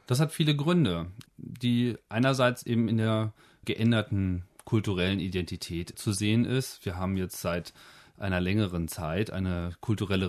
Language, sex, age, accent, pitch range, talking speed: German, male, 30-49, German, 95-115 Hz, 140 wpm